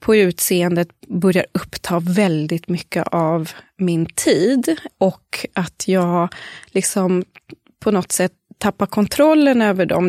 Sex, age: female, 20-39